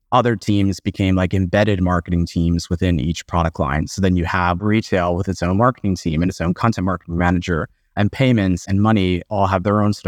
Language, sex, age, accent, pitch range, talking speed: English, male, 30-49, American, 95-110 Hz, 215 wpm